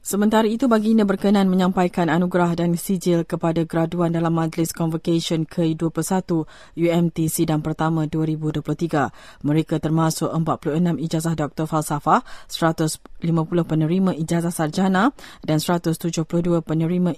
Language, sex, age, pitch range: English, female, 20-39, 165-185 Hz